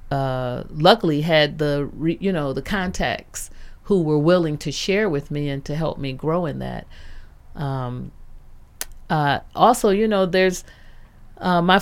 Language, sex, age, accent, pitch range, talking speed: English, female, 40-59, American, 135-185 Hz, 150 wpm